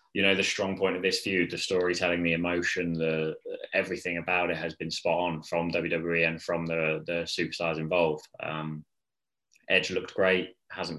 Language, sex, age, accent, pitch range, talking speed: English, male, 20-39, British, 80-90 Hz, 180 wpm